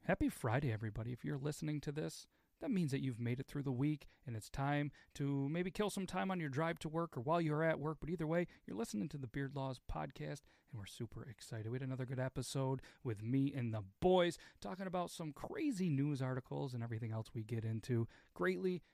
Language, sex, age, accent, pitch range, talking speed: English, male, 40-59, American, 130-185 Hz, 230 wpm